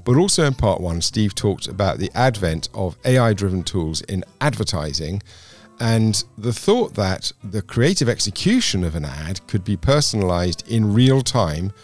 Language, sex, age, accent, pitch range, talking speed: English, male, 50-69, British, 90-120 Hz, 155 wpm